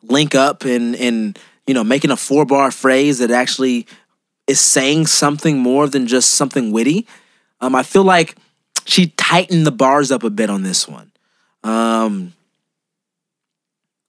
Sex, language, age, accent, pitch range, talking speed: male, English, 20-39, American, 135-175 Hz, 155 wpm